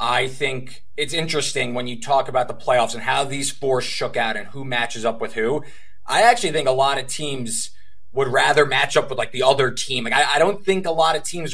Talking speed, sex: 245 wpm, male